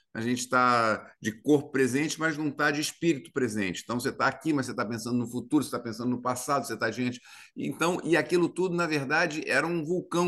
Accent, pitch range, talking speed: Brazilian, 115-155 Hz, 220 wpm